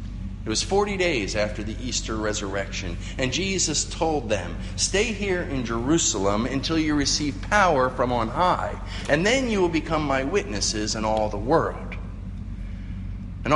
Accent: American